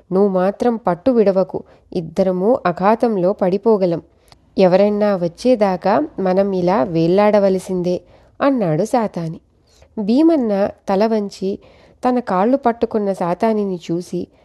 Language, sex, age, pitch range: Telugu, female, 30-49, 180-235 Hz